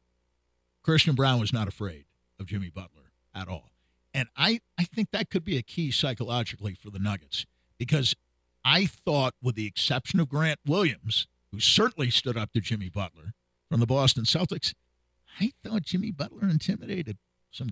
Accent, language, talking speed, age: American, English, 165 wpm, 50-69